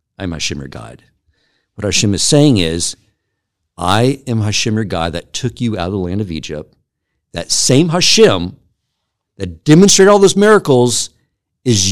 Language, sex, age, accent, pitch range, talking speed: English, male, 50-69, American, 95-125 Hz, 165 wpm